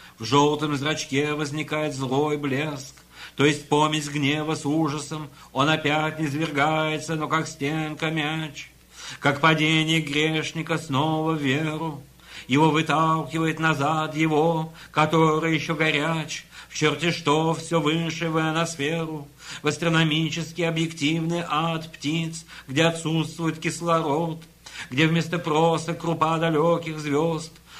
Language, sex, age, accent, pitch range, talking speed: Russian, male, 50-69, native, 145-160 Hz, 115 wpm